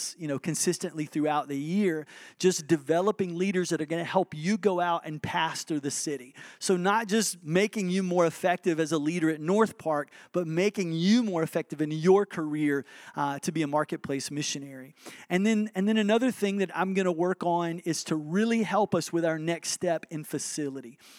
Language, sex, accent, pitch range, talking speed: English, male, American, 155-185 Hz, 200 wpm